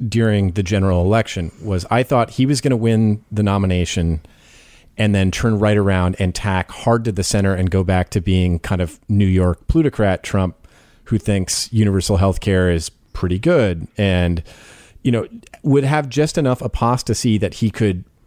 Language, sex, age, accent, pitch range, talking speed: English, male, 30-49, American, 100-125 Hz, 180 wpm